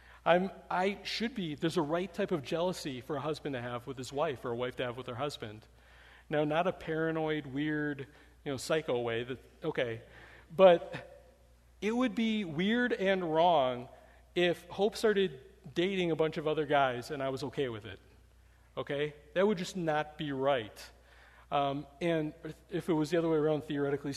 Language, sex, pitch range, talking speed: English, male, 125-180 Hz, 185 wpm